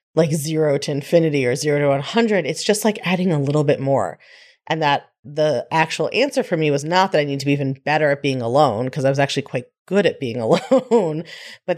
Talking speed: 230 wpm